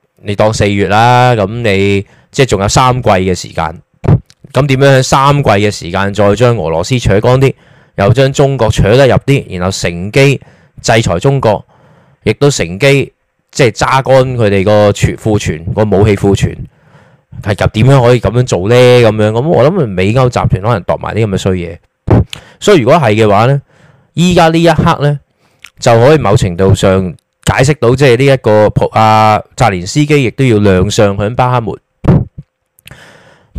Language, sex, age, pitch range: Chinese, male, 20-39, 100-135 Hz